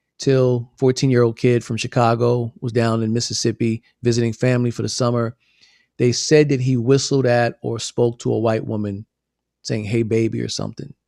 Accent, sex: American, male